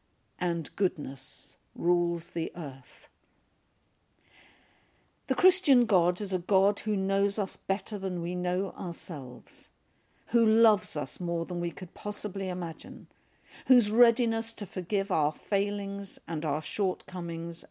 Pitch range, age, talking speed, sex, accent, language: 165-200 Hz, 50-69, 125 wpm, female, British, English